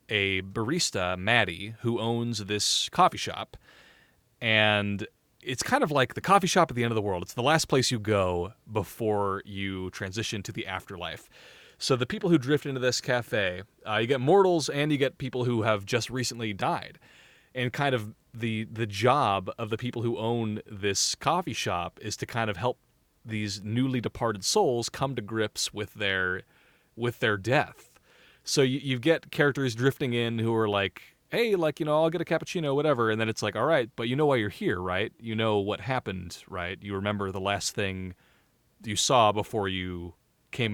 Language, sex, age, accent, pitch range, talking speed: English, male, 30-49, American, 105-130 Hz, 195 wpm